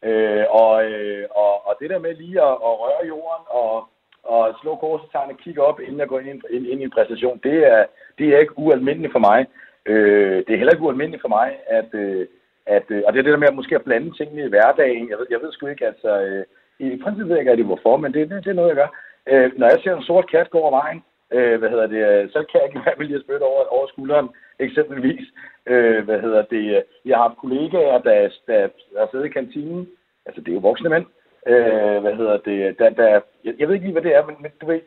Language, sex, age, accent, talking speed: Danish, male, 60-79, native, 245 wpm